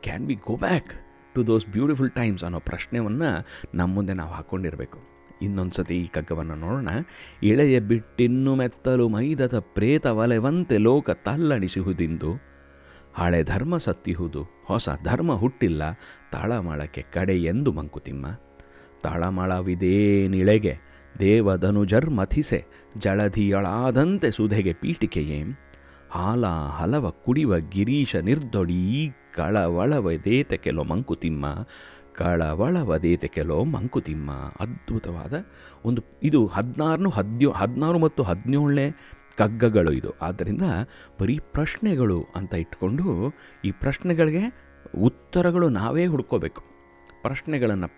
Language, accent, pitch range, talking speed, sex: Kannada, native, 85-130 Hz, 95 wpm, male